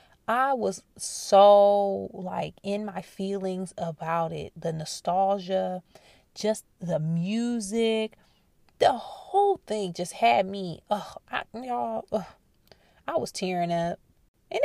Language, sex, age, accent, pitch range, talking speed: English, female, 20-39, American, 170-210 Hz, 120 wpm